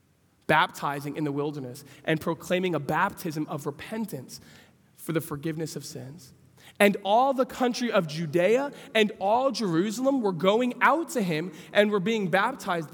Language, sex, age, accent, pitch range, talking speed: English, male, 20-39, American, 155-225 Hz, 155 wpm